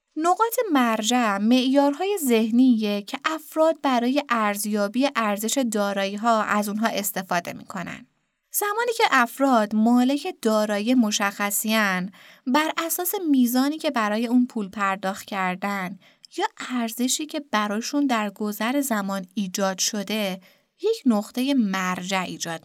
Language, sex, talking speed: Persian, female, 110 wpm